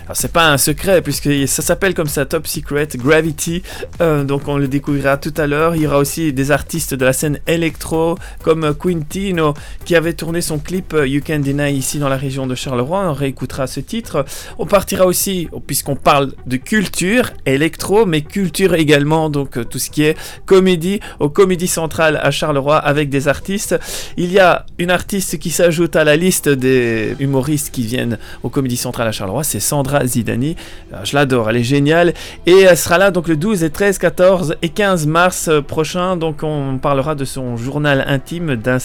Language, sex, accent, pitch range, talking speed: French, male, French, 135-170 Hz, 195 wpm